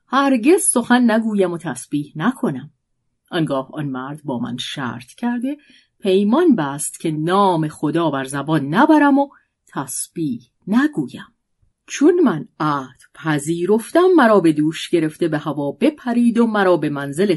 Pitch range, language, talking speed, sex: 160-245 Hz, Persian, 135 wpm, female